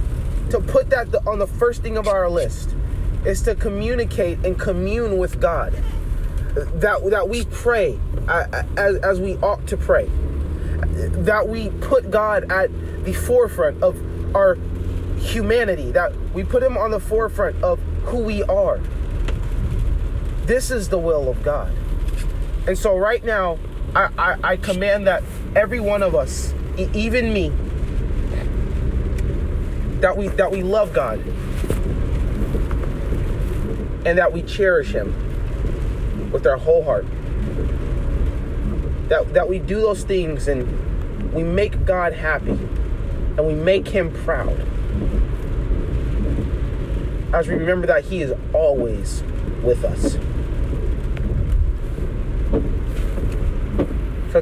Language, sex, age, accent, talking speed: English, male, 30-49, American, 120 wpm